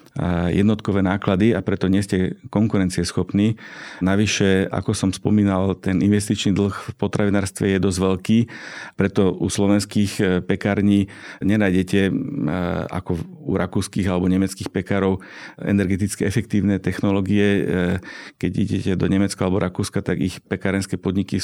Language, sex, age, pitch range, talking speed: Slovak, male, 50-69, 95-105 Hz, 120 wpm